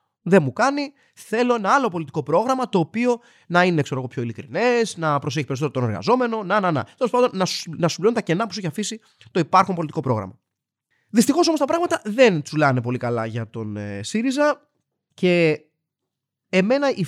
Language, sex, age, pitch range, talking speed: Greek, male, 30-49, 135-210 Hz, 190 wpm